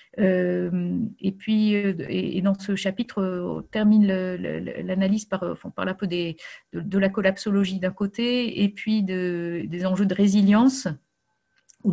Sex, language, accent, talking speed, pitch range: female, French, French, 165 wpm, 180-210 Hz